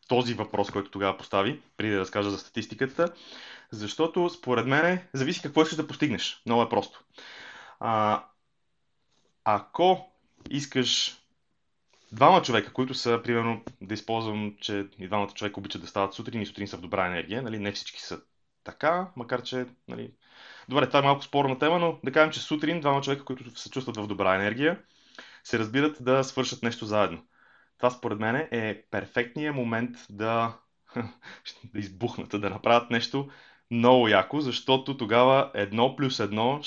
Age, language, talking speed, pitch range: 20-39, Bulgarian, 160 wpm, 105-130 Hz